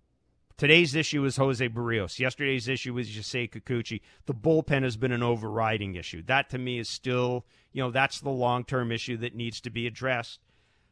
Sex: male